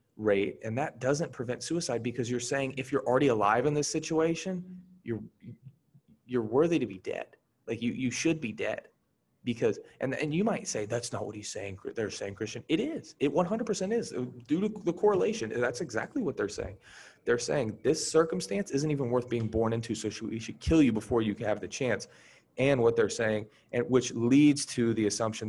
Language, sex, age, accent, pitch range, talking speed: English, male, 30-49, American, 105-140 Hz, 210 wpm